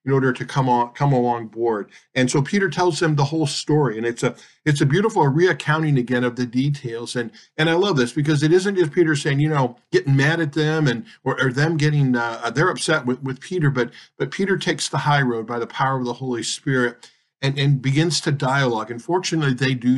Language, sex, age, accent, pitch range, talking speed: English, male, 50-69, American, 120-150 Hz, 235 wpm